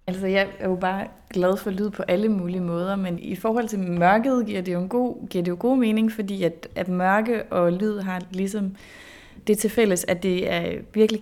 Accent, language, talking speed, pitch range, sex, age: native, Danish, 200 wpm, 185-230 Hz, female, 30-49